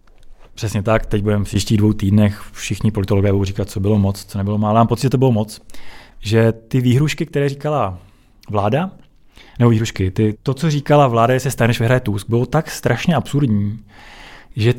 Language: Czech